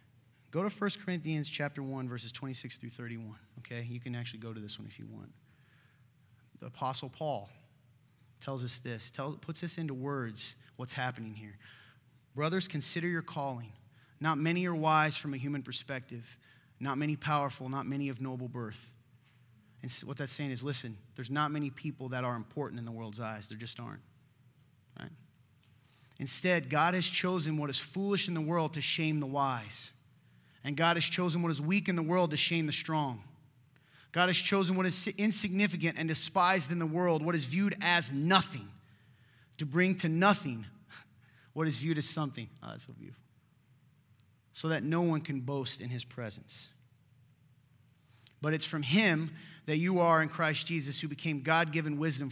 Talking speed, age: 180 wpm, 30-49